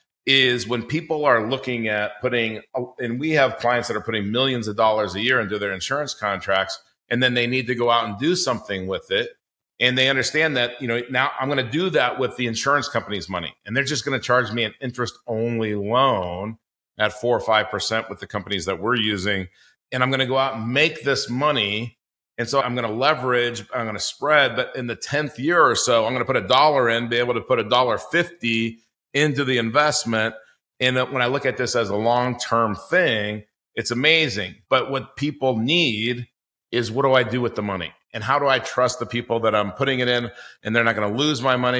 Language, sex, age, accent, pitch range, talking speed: English, male, 40-59, American, 110-135 Hz, 230 wpm